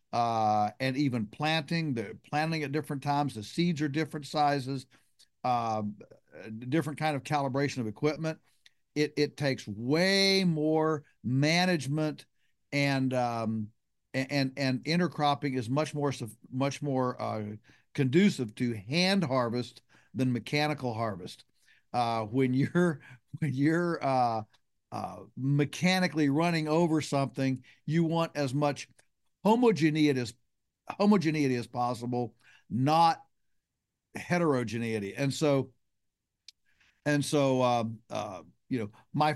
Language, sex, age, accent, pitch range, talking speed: English, male, 50-69, American, 125-155 Hz, 115 wpm